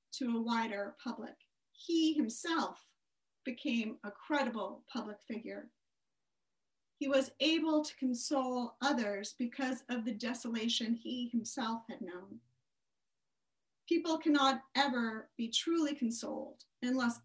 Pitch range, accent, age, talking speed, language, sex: 225-275 Hz, American, 40-59, 110 wpm, English, female